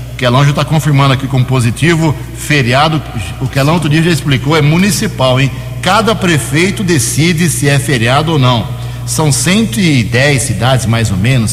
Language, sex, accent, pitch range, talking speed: Portuguese, male, Brazilian, 125-155 Hz, 165 wpm